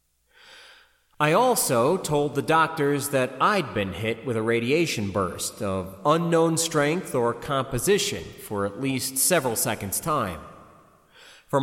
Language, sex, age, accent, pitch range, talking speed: English, male, 30-49, American, 115-175 Hz, 130 wpm